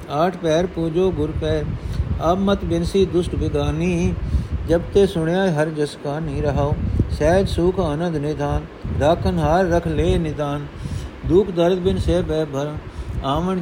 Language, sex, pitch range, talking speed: Punjabi, male, 115-175 Hz, 145 wpm